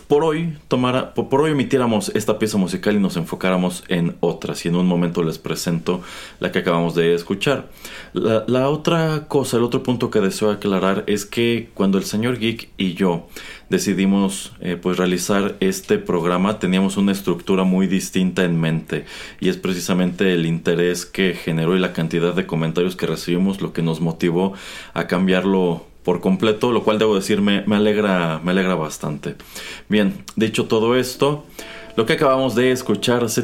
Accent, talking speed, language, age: Mexican, 175 wpm, Spanish, 30-49